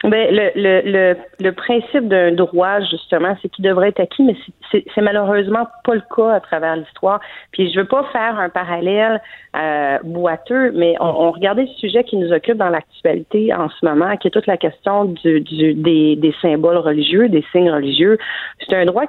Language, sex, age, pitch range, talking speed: French, female, 40-59, 170-215 Hz, 200 wpm